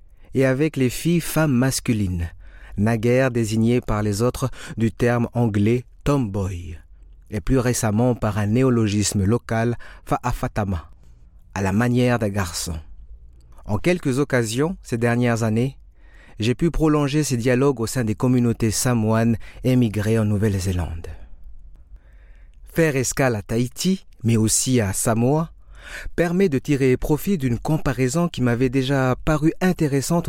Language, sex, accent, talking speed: French, male, French, 135 wpm